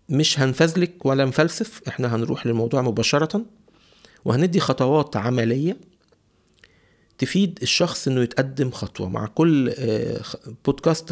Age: 50-69